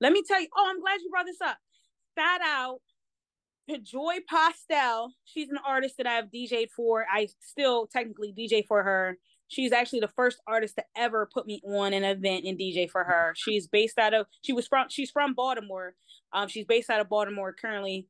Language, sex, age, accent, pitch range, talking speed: English, female, 20-39, American, 205-260 Hz, 200 wpm